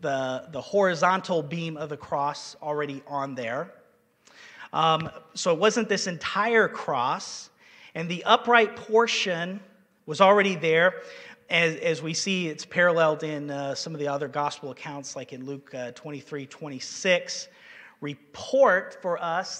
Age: 30-49